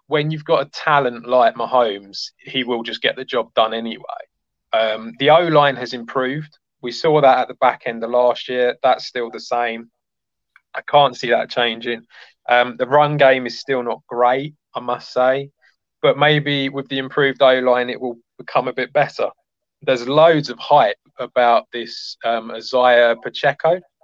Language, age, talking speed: English, 20-39, 175 wpm